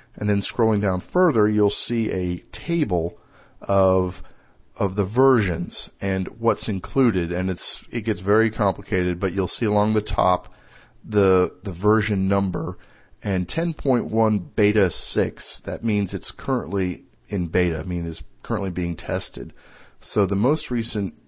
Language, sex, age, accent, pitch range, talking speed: English, male, 40-59, American, 90-110 Hz, 145 wpm